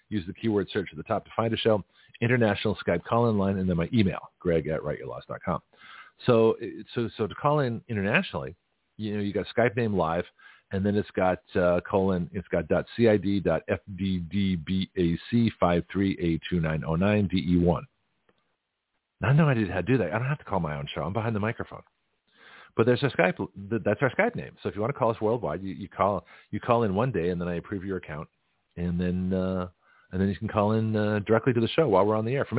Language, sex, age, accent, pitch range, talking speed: English, male, 40-59, American, 95-120 Hz, 255 wpm